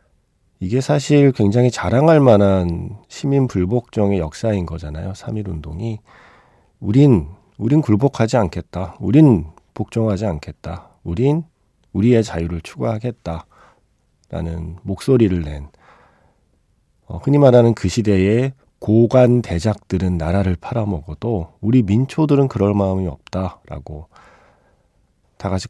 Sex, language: male, Korean